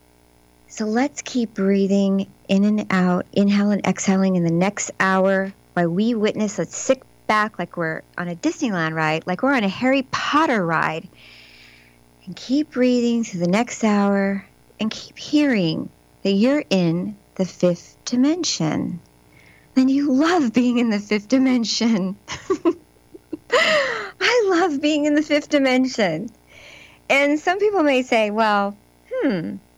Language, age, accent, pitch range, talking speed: English, 40-59, American, 150-245 Hz, 145 wpm